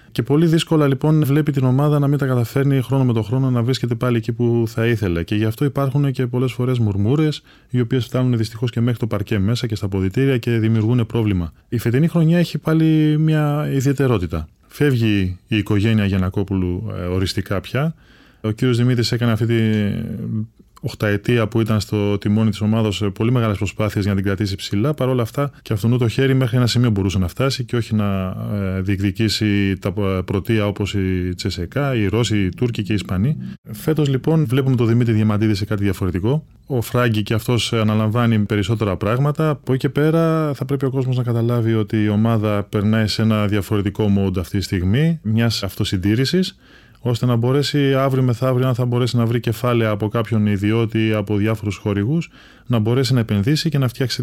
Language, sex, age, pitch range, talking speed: Greek, male, 20-39, 105-130 Hz, 180 wpm